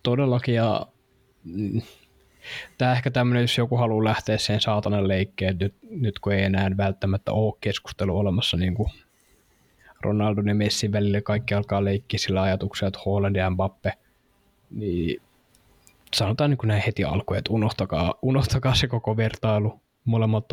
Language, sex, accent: Finnish, male, native